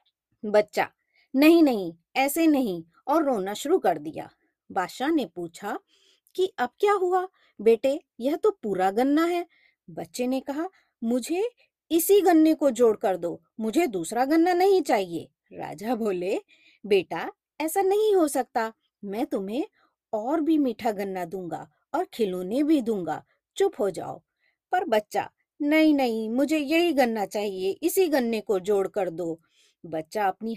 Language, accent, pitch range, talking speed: Hindi, native, 195-320 Hz, 145 wpm